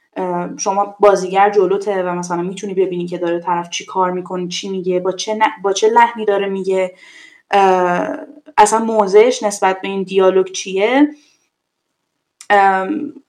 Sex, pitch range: female, 195-255 Hz